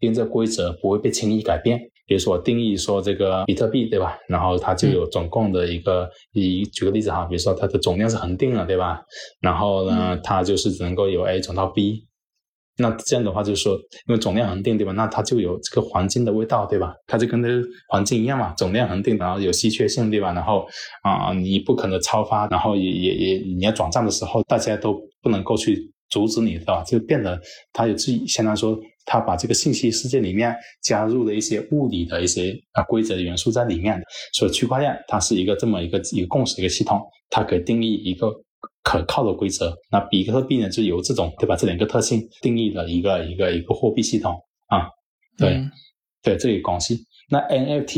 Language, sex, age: Chinese, male, 20-39